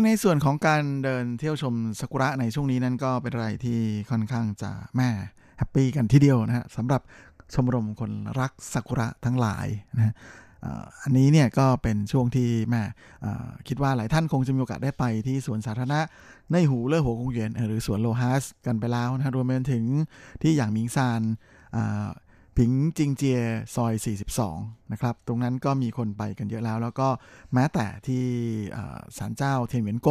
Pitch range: 115-140 Hz